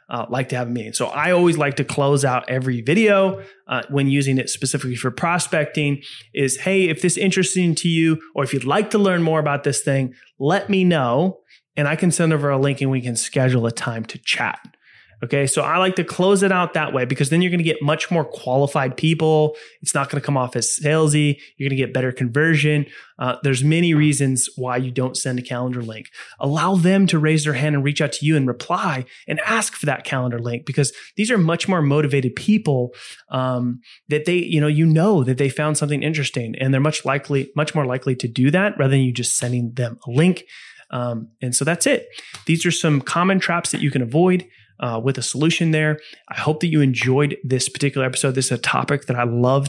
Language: English